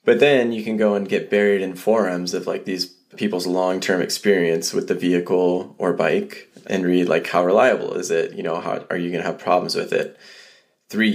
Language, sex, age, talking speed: English, male, 20-39, 215 wpm